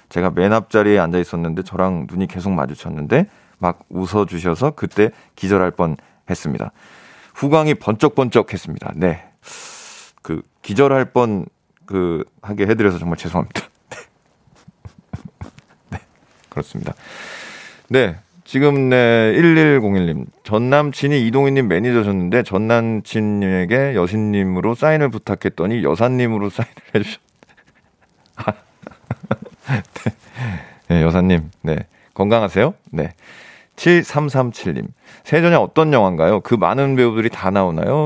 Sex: male